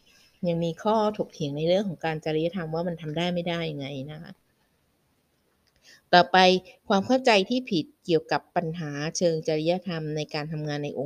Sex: female